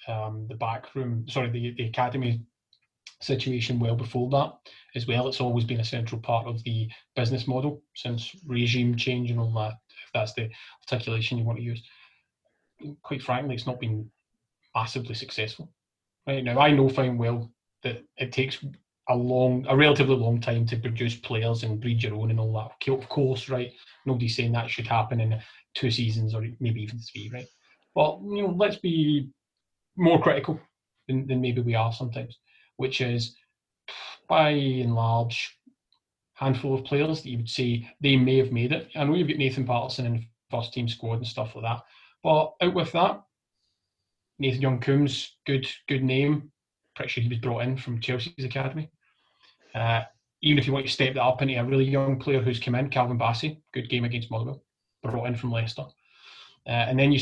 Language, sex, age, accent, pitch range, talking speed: English, male, 20-39, British, 115-135 Hz, 190 wpm